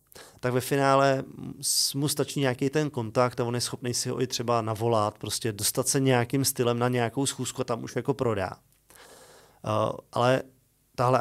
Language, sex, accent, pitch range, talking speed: Czech, male, native, 115-130 Hz, 165 wpm